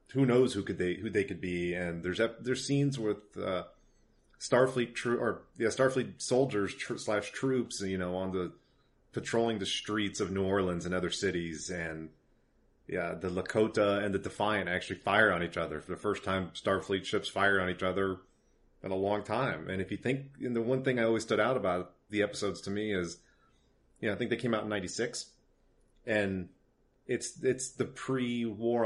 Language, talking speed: English, 195 wpm